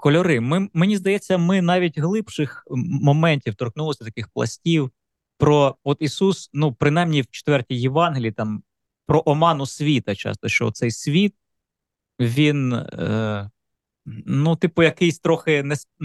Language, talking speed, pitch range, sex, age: Ukrainian, 120 wpm, 115-160 Hz, male, 20-39